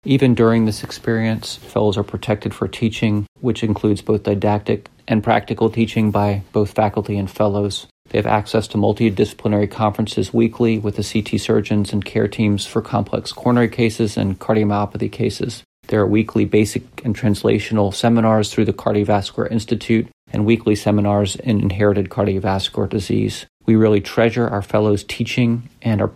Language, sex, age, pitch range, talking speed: English, male, 40-59, 105-115 Hz, 155 wpm